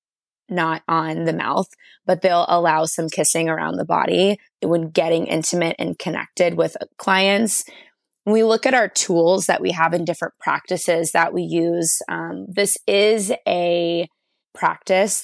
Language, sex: English, female